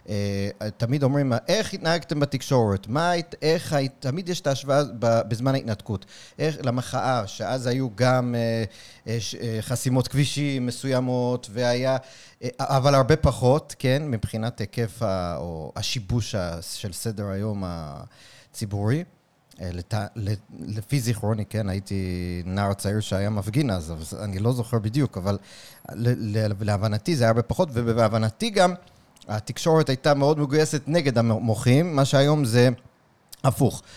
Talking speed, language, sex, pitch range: 115 wpm, Hebrew, male, 110-135 Hz